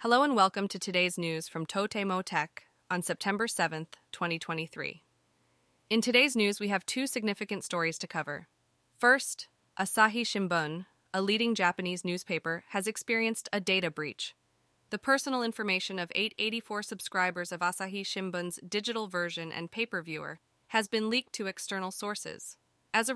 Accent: American